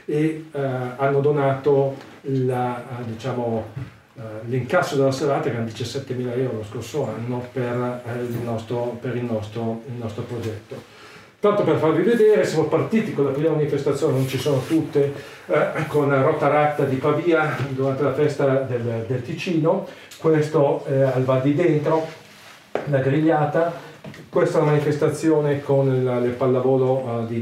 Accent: native